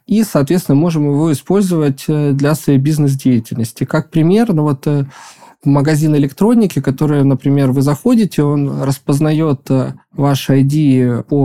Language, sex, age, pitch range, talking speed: Russian, male, 20-39, 135-160 Hz, 130 wpm